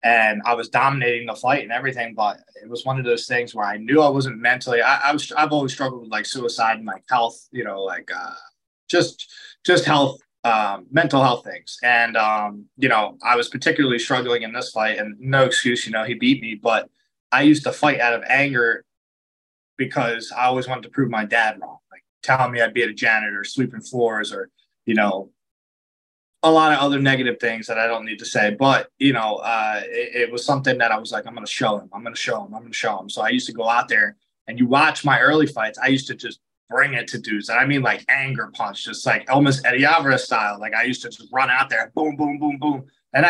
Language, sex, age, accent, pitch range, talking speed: English, male, 20-39, American, 115-140 Hz, 245 wpm